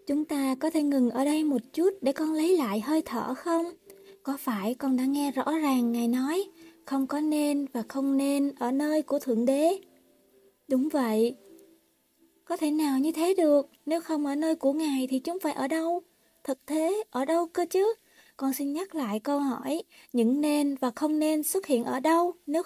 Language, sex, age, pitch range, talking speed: Vietnamese, female, 20-39, 255-310 Hz, 205 wpm